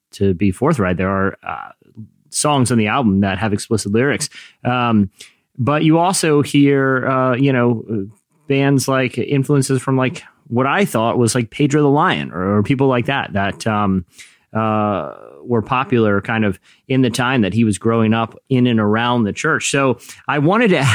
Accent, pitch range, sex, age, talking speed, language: American, 110-140 Hz, male, 30-49, 185 wpm, English